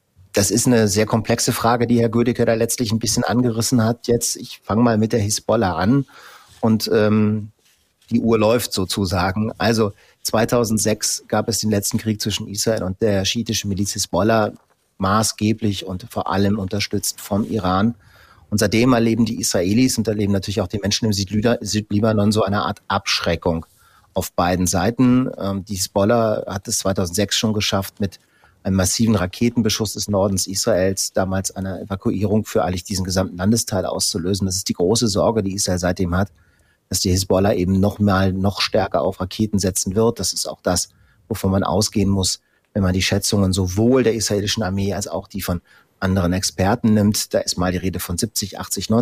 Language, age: German, 30-49